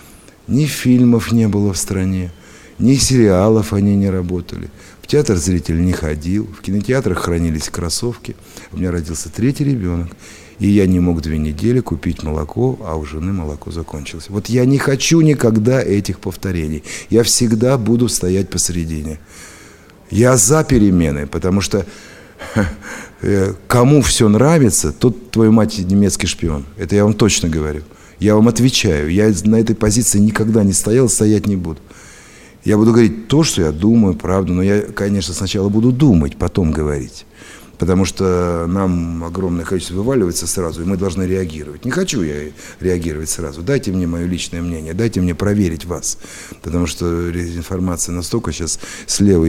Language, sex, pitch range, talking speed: Russian, male, 85-110 Hz, 155 wpm